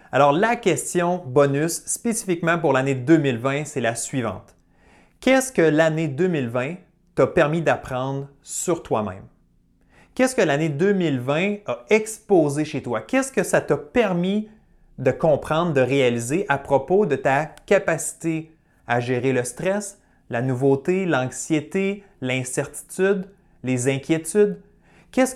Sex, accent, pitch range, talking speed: male, Canadian, 130-180 Hz, 125 wpm